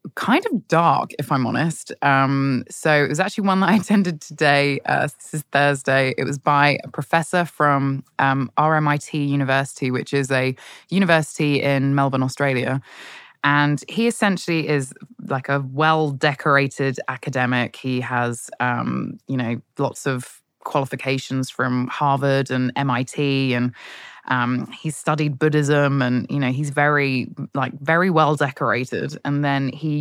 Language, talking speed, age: English, 150 wpm, 20-39